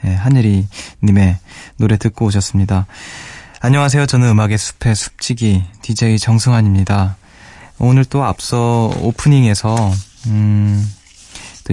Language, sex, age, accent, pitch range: Korean, male, 20-39, native, 100-120 Hz